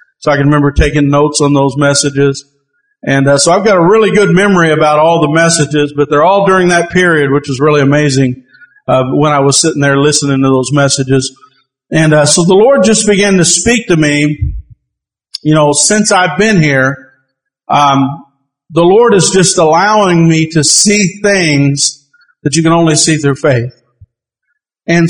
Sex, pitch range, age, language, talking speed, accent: male, 140-185 Hz, 50-69, English, 185 wpm, American